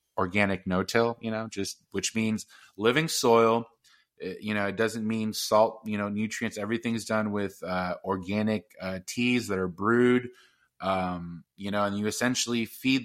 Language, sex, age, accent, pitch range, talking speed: English, male, 20-39, American, 95-110 Hz, 160 wpm